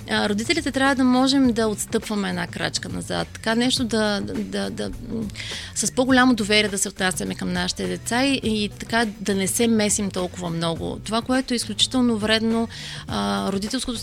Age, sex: 30-49, female